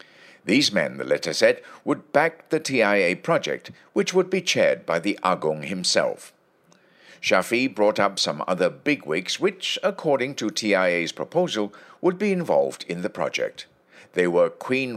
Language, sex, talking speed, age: English, male, 150 wpm, 60-79